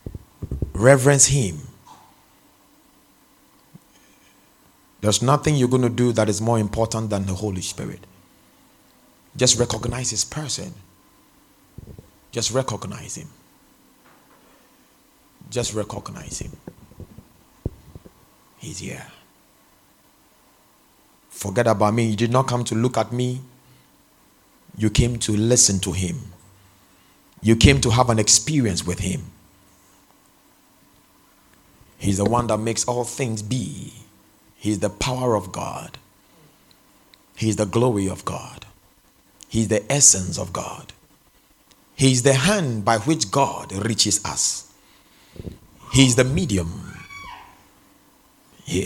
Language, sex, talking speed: English, male, 110 wpm